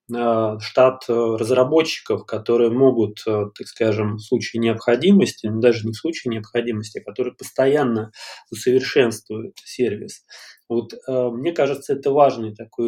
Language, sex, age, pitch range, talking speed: Russian, male, 20-39, 115-130 Hz, 120 wpm